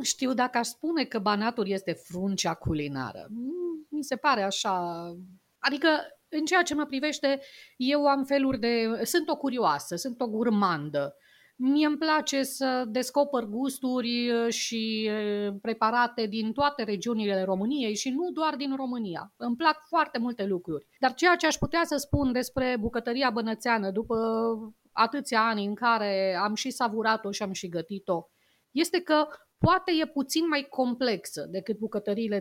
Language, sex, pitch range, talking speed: Romanian, female, 205-270 Hz, 150 wpm